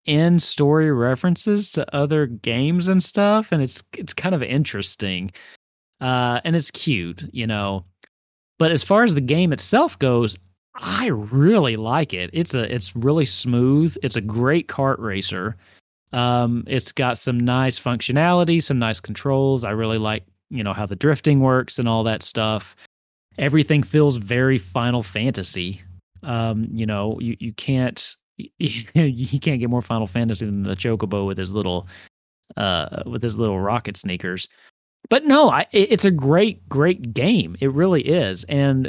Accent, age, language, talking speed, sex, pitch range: American, 30-49, English, 160 wpm, male, 110-155 Hz